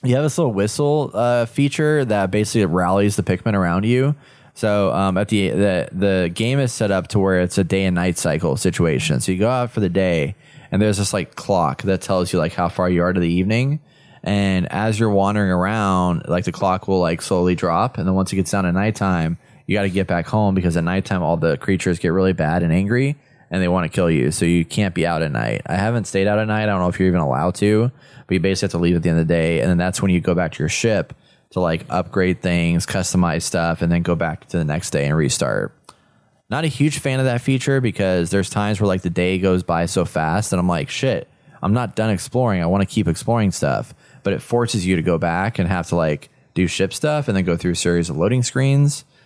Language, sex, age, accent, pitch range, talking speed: English, male, 20-39, American, 90-115 Hz, 260 wpm